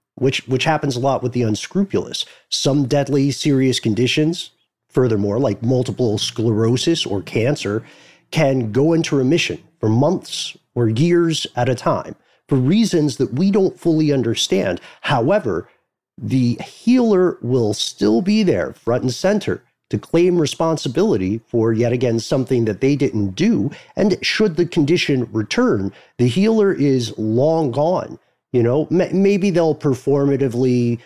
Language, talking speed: English, 140 wpm